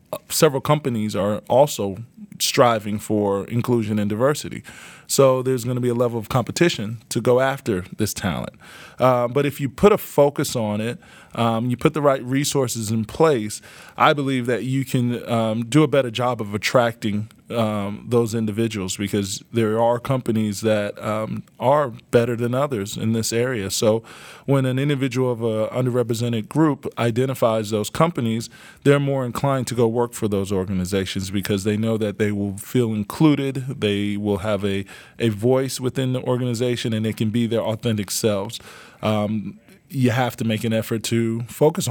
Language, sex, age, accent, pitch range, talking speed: English, male, 20-39, American, 110-130 Hz, 175 wpm